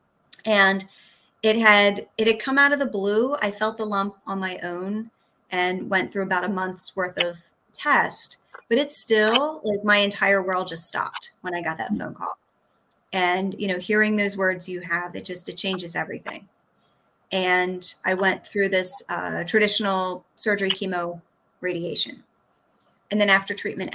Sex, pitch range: female, 185-220 Hz